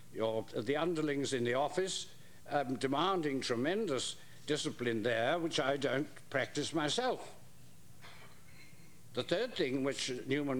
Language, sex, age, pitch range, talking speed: English, male, 60-79, 135-170 Hz, 115 wpm